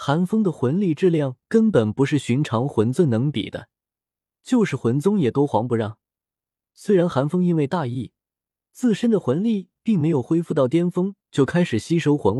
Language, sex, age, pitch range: Chinese, male, 20-39, 115-170 Hz